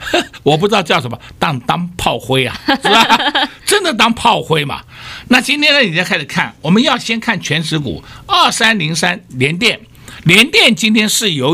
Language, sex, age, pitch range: Chinese, male, 60-79, 130-215 Hz